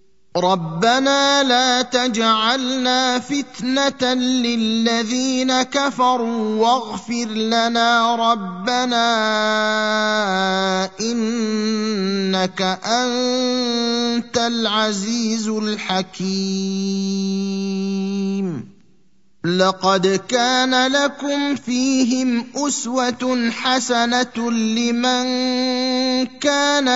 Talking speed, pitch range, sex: 45 wpm, 200-250 Hz, male